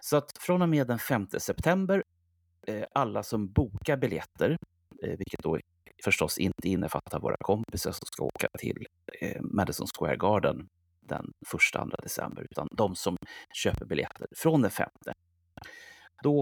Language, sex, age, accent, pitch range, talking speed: Swedish, male, 30-49, native, 85-125 Hz, 145 wpm